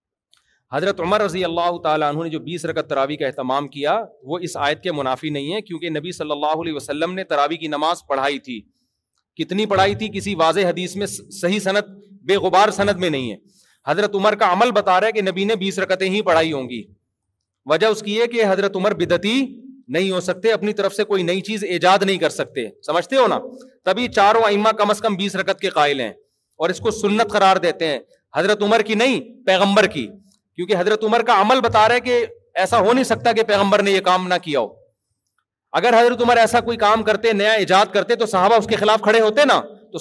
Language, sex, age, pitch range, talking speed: Urdu, male, 40-59, 175-220 Hz, 230 wpm